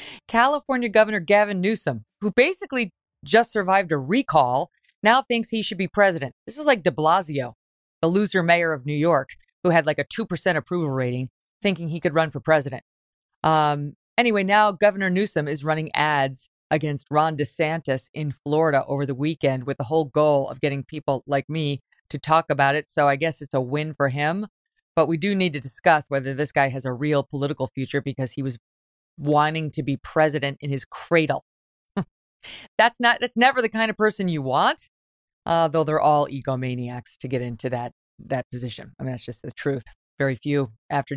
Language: English